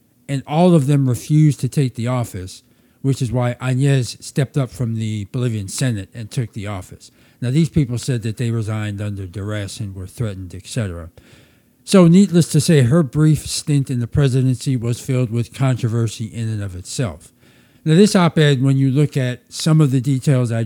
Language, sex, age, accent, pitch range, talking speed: English, male, 60-79, American, 115-150 Hz, 190 wpm